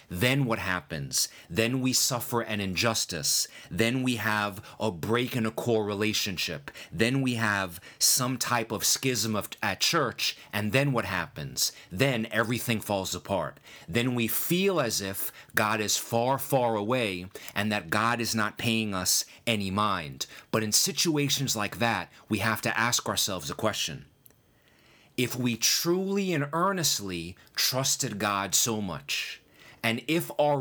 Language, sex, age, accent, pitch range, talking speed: English, male, 30-49, American, 105-135 Hz, 150 wpm